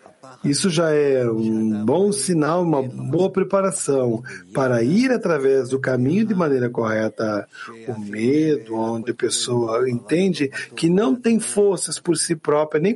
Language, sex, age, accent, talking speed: English, male, 60-79, Brazilian, 145 wpm